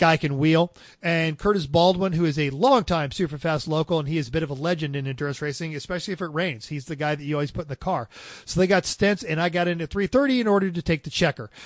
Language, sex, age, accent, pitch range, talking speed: English, male, 40-59, American, 145-175 Hz, 280 wpm